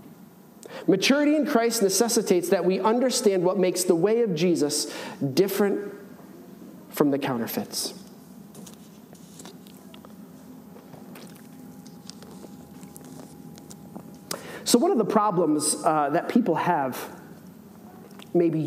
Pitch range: 165-210 Hz